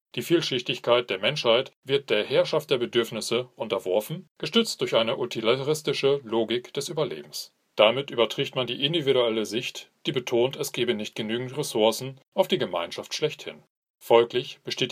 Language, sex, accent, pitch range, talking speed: English, male, German, 115-150 Hz, 145 wpm